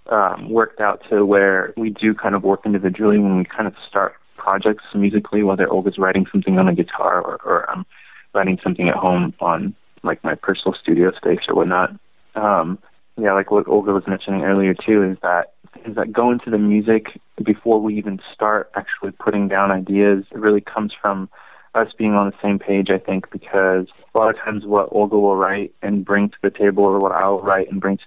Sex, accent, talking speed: male, American, 205 wpm